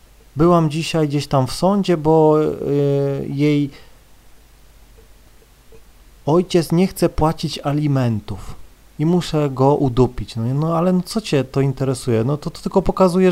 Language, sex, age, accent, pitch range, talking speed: Polish, male, 40-59, native, 130-175 Hz, 140 wpm